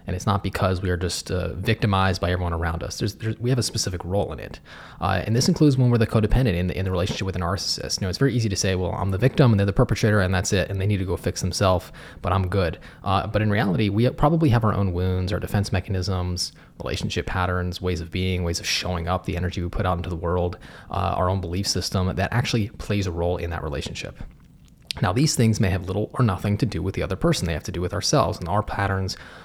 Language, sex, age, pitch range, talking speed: English, male, 20-39, 90-105 Hz, 265 wpm